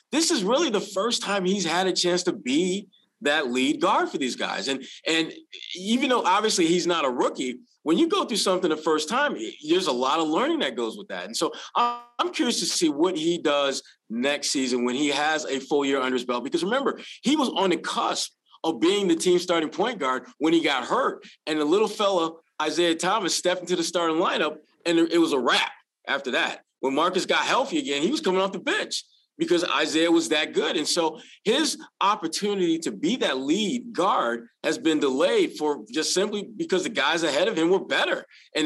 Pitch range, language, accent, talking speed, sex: 155-255 Hz, English, American, 215 wpm, male